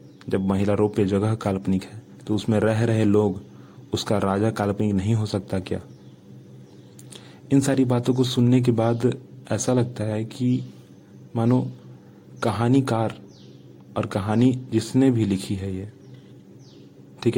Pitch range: 95-120 Hz